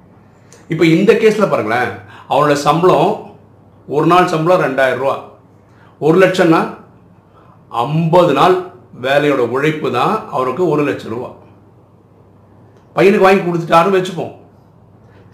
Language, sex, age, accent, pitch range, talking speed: Tamil, male, 50-69, native, 120-175 Hz, 100 wpm